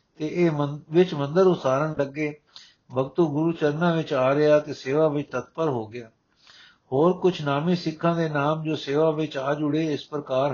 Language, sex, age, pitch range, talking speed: Punjabi, male, 60-79, 140-160 Hz, 180 wpm